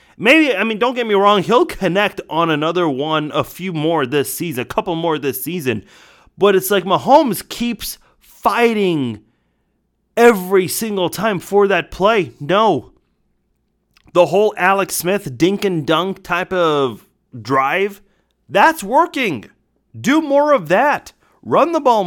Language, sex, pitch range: English, male, 155-230 Hz